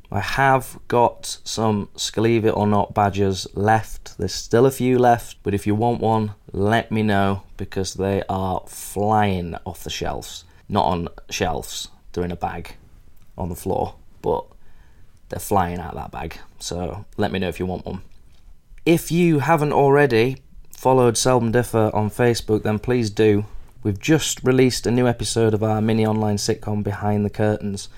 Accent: British